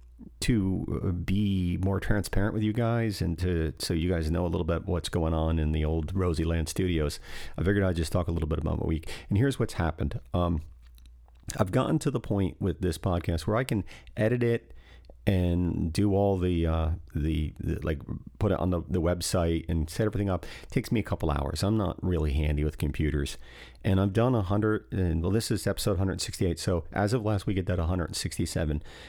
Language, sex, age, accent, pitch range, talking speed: English, male, 40-59, American, 80-100 Hz, 210 wpm